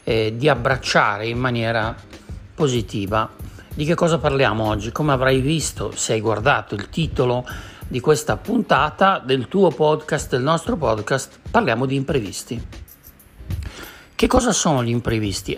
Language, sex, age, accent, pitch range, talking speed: Italian, male, 60-79, native, 120-165 Hz, 140 wpm